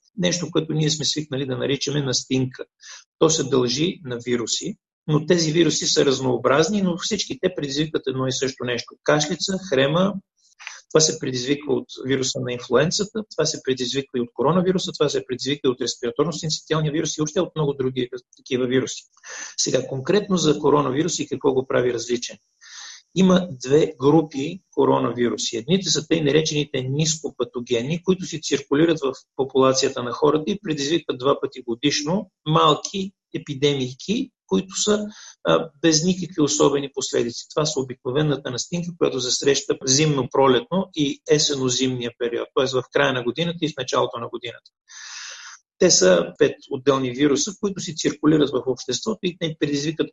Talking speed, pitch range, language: 150 wpm, 130-170 Hz, Bulgarian